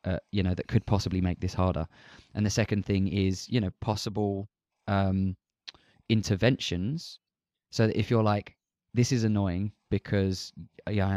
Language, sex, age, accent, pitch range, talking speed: English, male, 20-39, British, 95-110 Hz, 150 wpm